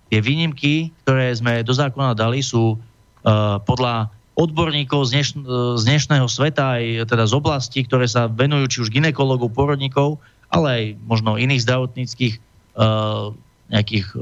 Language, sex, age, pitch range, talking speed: Slovak, male, 30-49, 120-150 Hz, 130 wpm